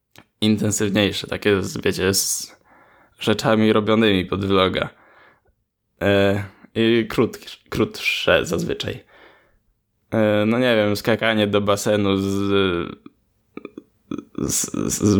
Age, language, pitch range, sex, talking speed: 10-29, Polish, 100-110 Hz, male, 75 wpm